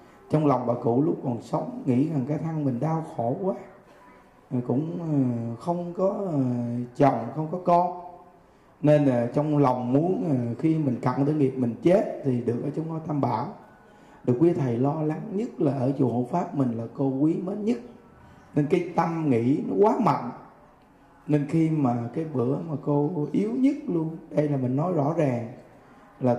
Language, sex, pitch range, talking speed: Vietnamese, male, 130-160 Hz, 190 wpm